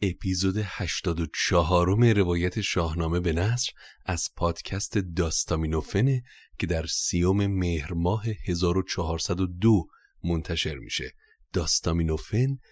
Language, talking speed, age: Persian, 90 wpm, 30-49